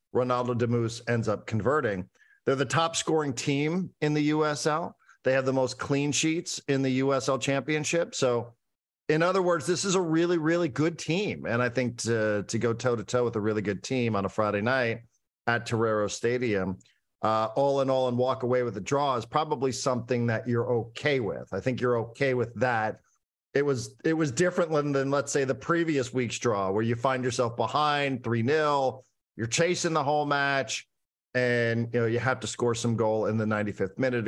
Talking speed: 205 wpm